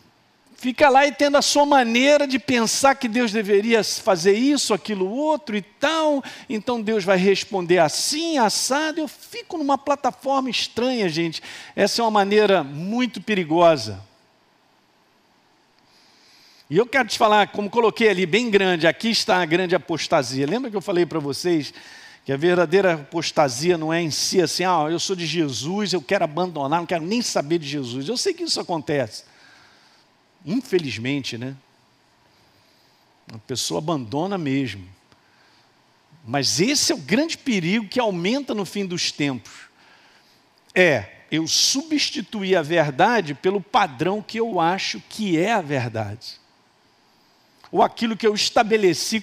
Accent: Brazilian